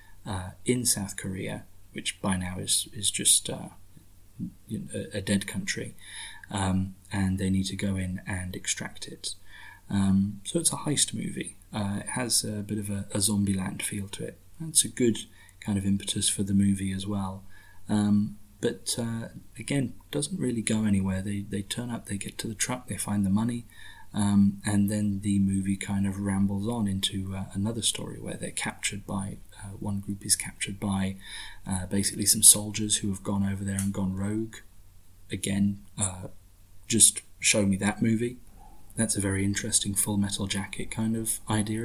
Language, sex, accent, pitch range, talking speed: English, male, British, 95-105 Hz, 180 wpm